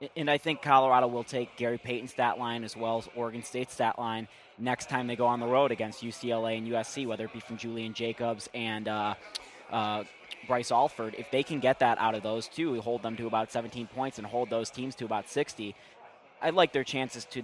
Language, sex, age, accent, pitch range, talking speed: English, male, 20-39, American, 115-135 Hz, 225 wpm